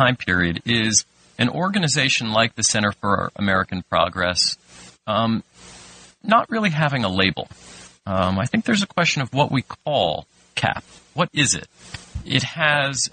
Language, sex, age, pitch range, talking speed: English, male, 40-59, 85-135 Hz, 150 wpm